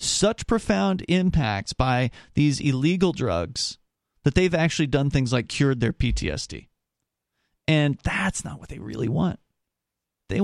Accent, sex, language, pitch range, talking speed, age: American, male, English, 135-170 Hz, 140 wpm, 40-59